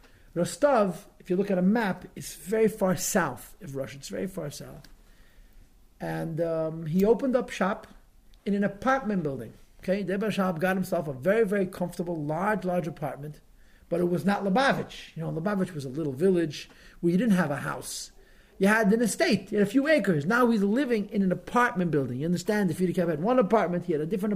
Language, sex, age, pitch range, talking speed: English, male, 50-69, 165-220 Hz, 205 wpm